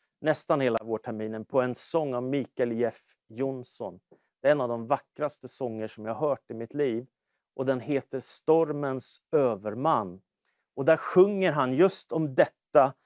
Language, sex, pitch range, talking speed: English, male, 135-165 Hz, 170 wpm